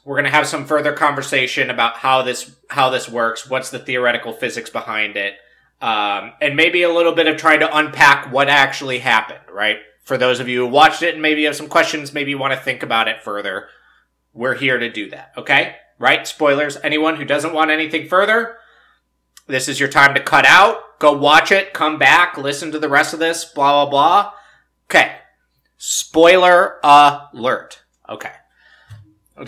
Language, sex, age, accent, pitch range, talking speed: English, male, 30-49, American, 125-155 Hz, 190 wpm